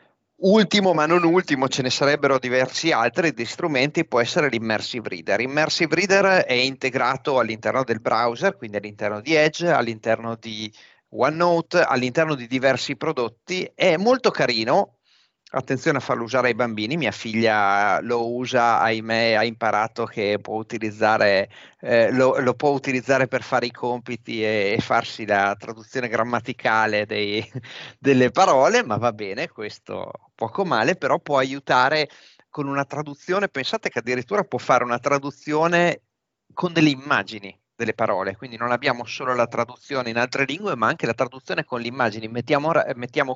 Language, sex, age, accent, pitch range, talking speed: Italian, male, 30-49, native, 115-140 Hz, 155 wpm